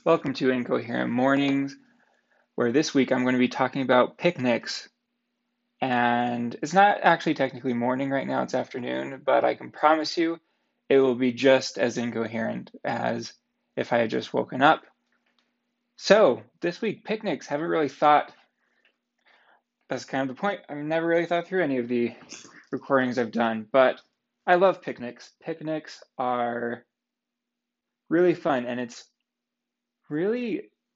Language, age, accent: English, 20-39, American